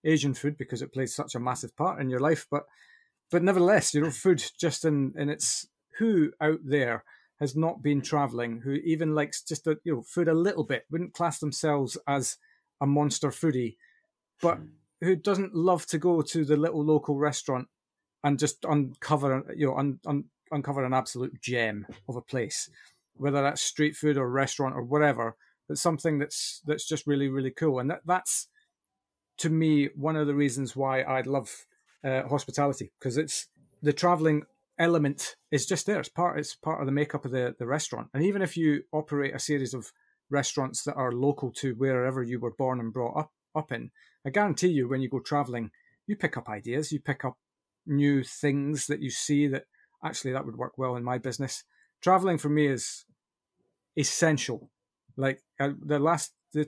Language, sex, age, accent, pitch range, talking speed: English, male, 30-49, British, 130-160 Hz, 190 wpm